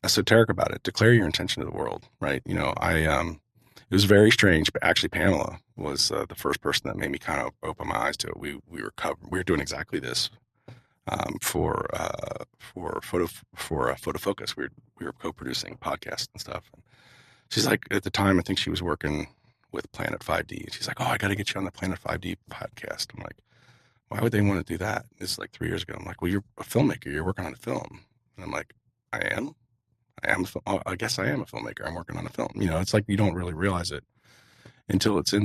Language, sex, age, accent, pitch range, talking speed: English, male, 40-59, American, 90-115 Hz, 245 wpm